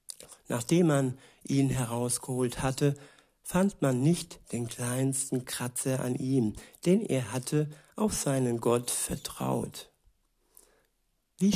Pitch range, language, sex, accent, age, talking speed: 130-145 Hz, German, male, German, 60-79, 110 wpm